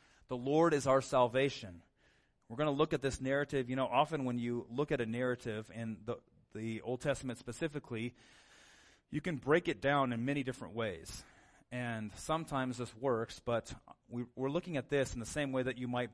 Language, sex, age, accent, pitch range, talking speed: English, male, 30-49, American, 110-135 Hz, 195 wpm